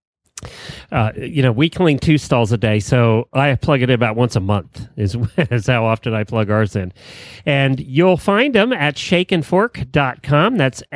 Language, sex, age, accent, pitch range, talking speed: English, male, 40-59, American, 125-165 Hz, 180 wpm